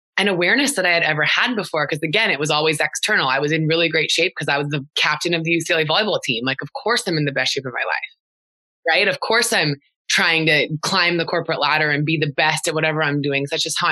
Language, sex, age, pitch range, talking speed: English, female, 20-39, 150-175 Hz, 270 wpm